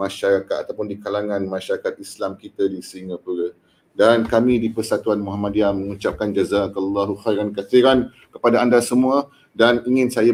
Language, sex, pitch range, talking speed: Malay, male, 100-125 Hz, 140 wpm